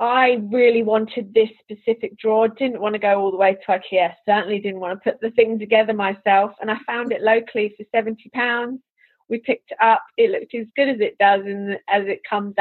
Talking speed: 220 wpm